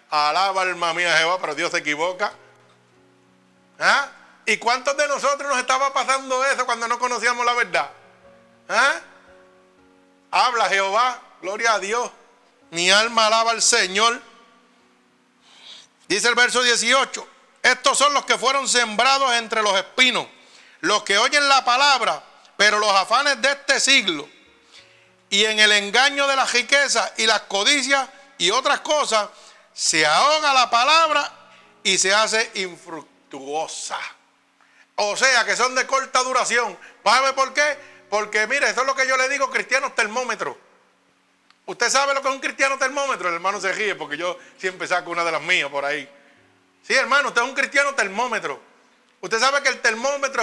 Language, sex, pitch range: Spanish, male, 195-270 Hz